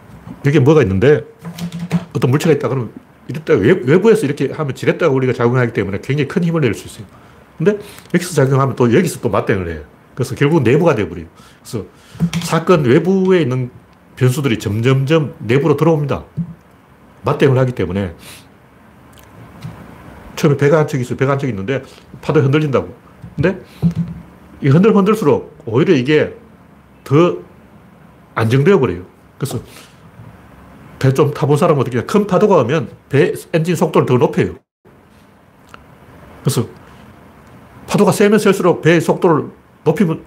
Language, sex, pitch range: Korean, male, 130-175 Hz